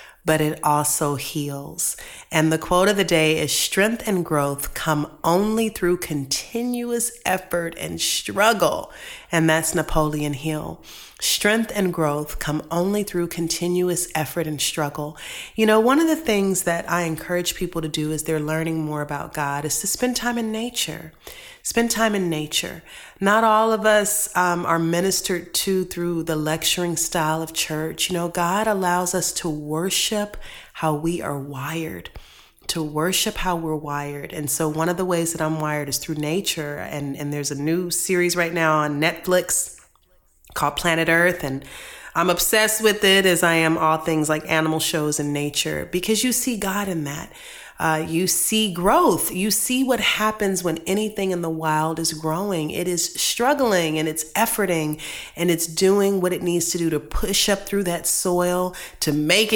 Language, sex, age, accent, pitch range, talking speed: English, female, 30-49, American, 155-190 Hz, 175 wpm